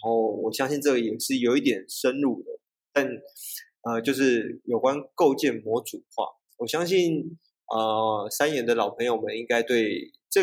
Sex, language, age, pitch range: male, Chinese, 20-39, 115-160 Hz